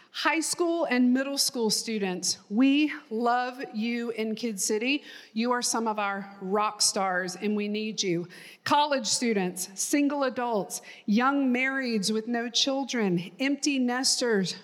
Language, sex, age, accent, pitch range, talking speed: English, female, 40-59, American, 205-275 Hz, 140 wpm